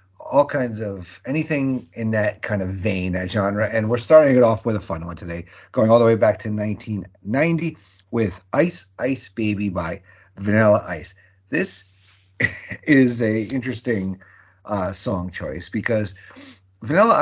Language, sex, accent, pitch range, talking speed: English, male, American, 95-120 Hz, 155 wpm